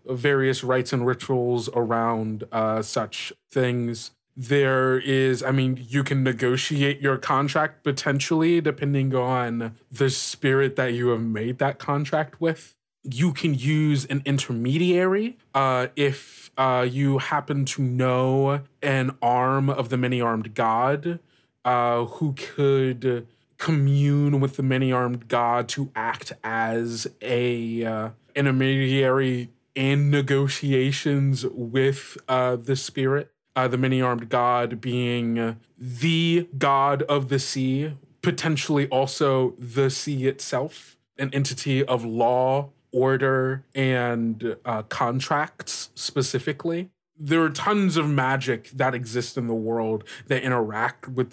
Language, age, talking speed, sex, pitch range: English, 20-39, 120 wpm, male, 125-140 Hz